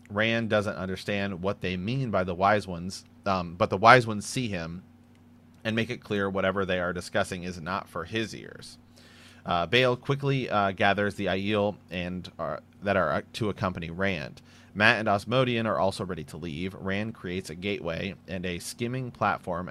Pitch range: 90-110 Hz